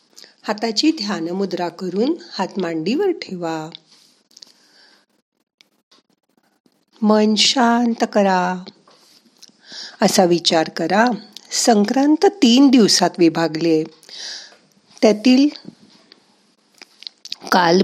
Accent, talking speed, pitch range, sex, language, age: native, 50 wpm, 175-235 Hz, female, Marathi, 50-69